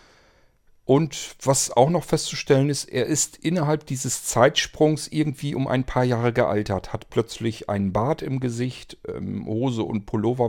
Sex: male